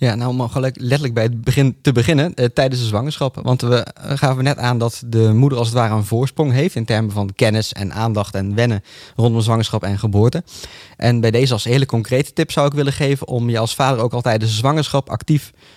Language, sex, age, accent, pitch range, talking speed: Dutch, male, 20-39, Dutch, 110-135 Hz, 225 wpm